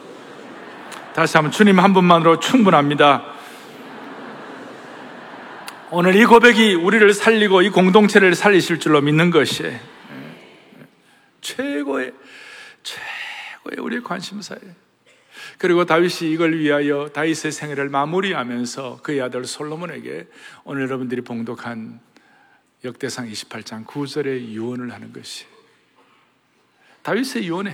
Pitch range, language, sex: 145-210 Hz, Korean, male